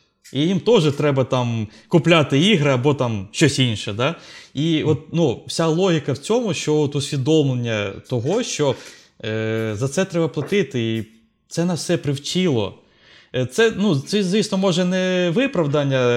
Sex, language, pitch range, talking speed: male, Ukrainian, 125-165 Hz, 150 wpm